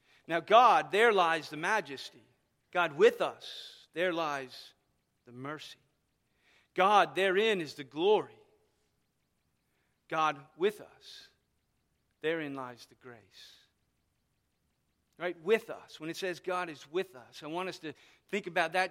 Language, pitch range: English, 155-200 Hz